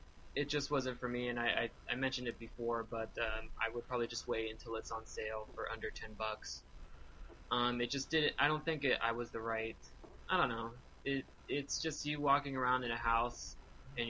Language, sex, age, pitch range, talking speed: English, male, 20-39, 110-125 Hz, 220 wpm